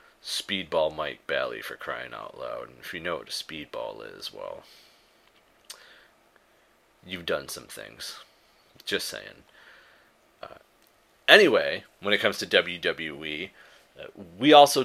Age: 30-49